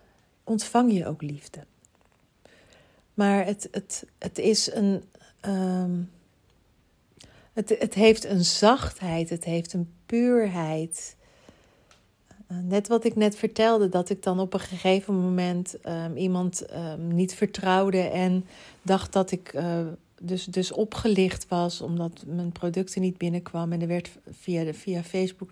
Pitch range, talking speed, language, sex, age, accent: 175-210 Hz, 135 wpm, Dutch, female, 40-59, Dutch